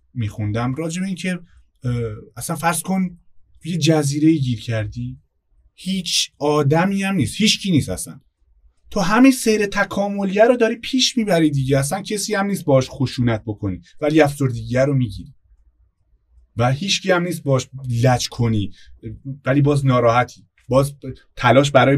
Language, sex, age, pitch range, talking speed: Persian, male, 30-49, 105-140 Hz, 145 wpm